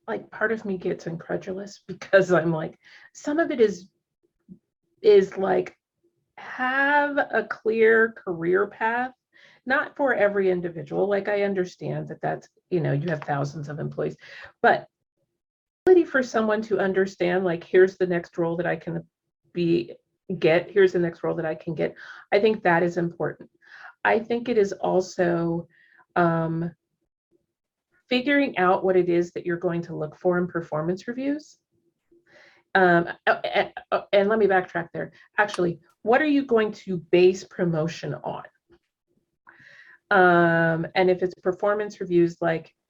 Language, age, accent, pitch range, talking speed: English, 30-49, American, 170-220 Hz, 150 wpm